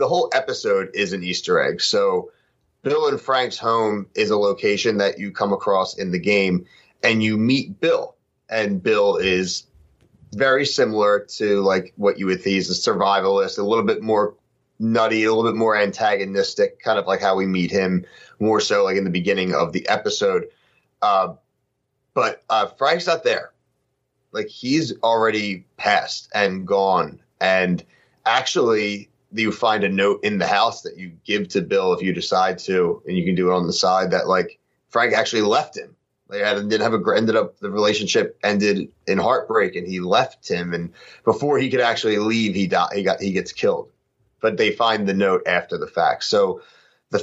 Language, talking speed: English, 190 wpm